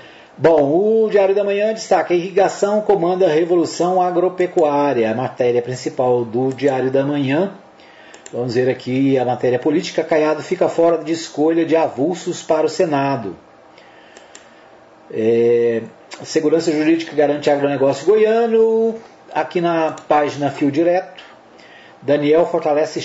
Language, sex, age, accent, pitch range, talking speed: Portuguese, male, 40-59, Brazilian, 135-170 Hz, 125 wpm